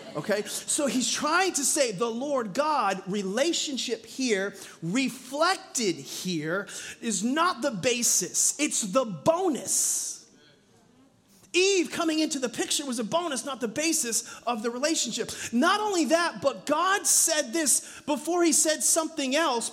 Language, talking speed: English, 140 wpm